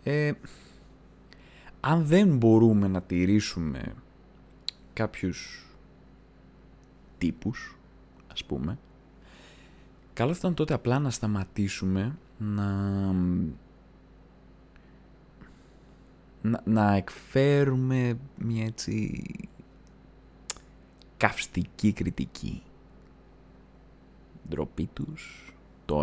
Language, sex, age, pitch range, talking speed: Greek, male, 20-39, 75-110 Hz, 60 wpm